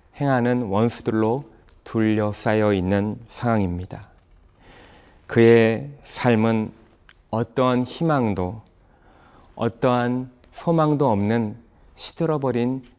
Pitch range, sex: 100-125 Hz, male